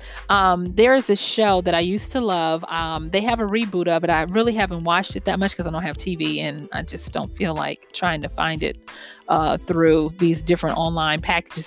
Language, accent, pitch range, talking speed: English, American, 180-230 Hz, 225 wpm